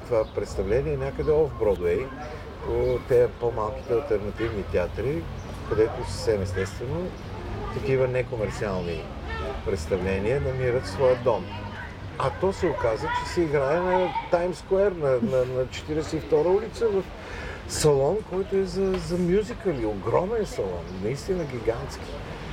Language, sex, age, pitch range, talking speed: Bulgarian, male, 50-69, 105-160 Hz, 115 wpm